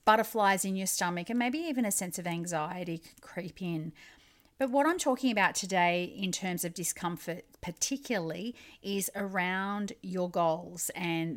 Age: 40-59